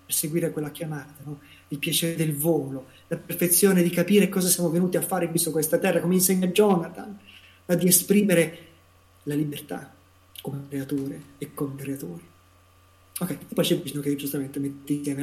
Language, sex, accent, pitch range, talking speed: Italian, male, native, 140-180 Hz, 170 wpm